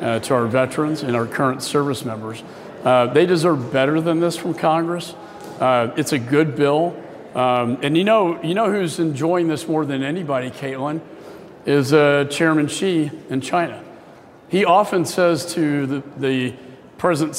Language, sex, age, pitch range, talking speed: English, male, 50-69, 135-165 Hz, 165 wpm